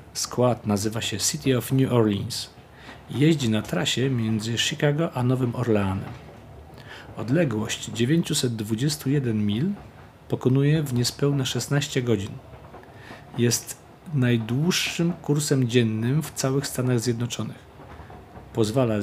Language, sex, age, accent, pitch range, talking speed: Polish, male, 40-59, native, 110-145 Hz, 100 wpm